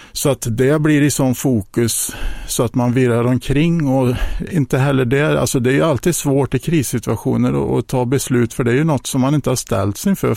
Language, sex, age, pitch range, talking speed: Swedish, male, 50-69, 115-140 Hz, 225 wpm